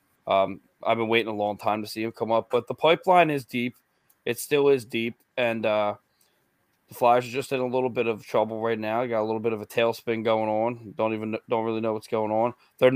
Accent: American